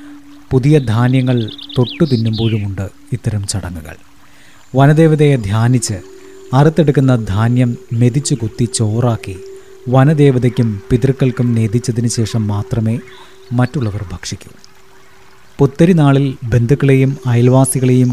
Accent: native